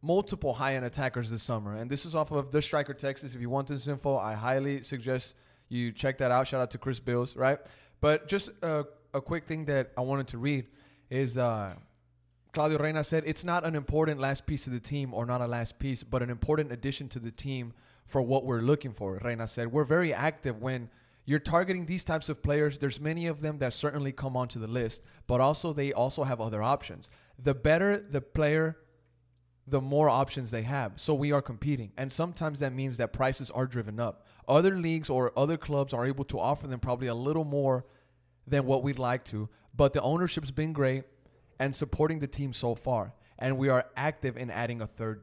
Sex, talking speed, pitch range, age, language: male, 215 wpm, 125-150 Hz, 20-39, English